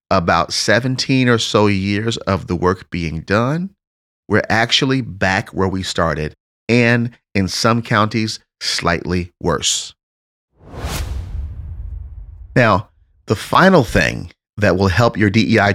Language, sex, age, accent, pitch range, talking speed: English, male, 30-49, American, 90-115 Hz, 120 wpm